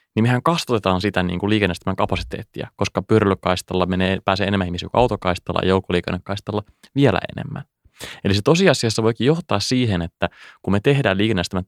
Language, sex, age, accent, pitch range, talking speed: Finnish, male, 20-39, native, 95-135 Hz, 150 wpm